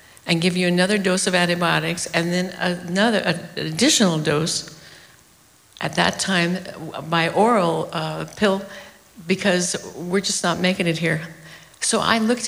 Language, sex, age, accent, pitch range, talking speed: English, female, 60-79, American, 175-200 Hz, 145 wpm